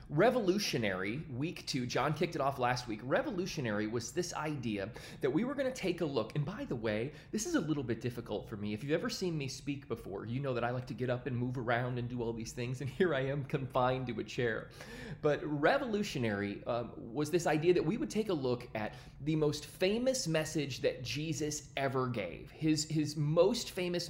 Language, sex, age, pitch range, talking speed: English, male, 30-49, 125-185 Hz, 220 wpm